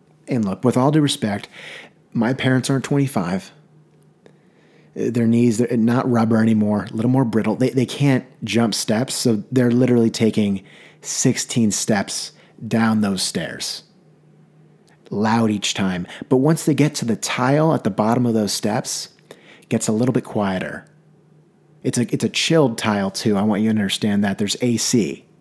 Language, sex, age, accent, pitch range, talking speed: English, male, 30-49, American, 115-155 Hz, 170 wpm